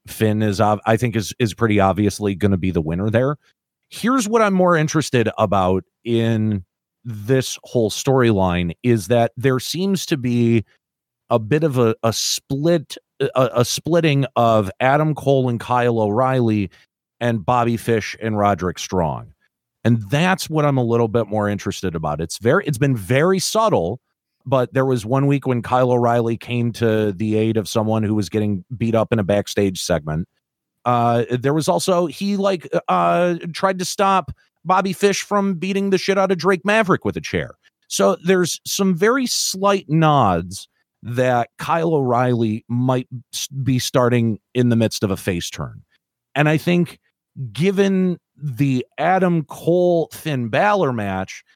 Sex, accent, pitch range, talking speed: male, American, 110-160 Hz, 165 wpm